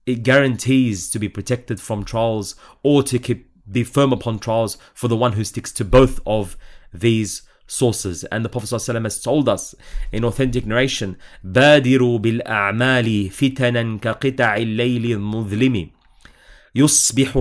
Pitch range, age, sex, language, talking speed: 105-130 Hz, 30-49, male, English, 140 wpm